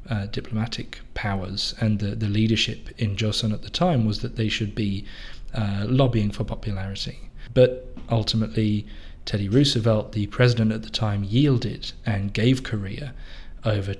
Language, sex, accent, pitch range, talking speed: English, male, British, 105-125 Hz, 150 wpm